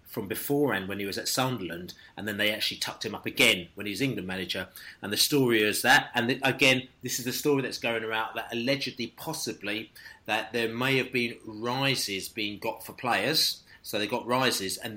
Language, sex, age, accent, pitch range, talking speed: English, male, 30-49, British, 110-135 Hz, 210 wpm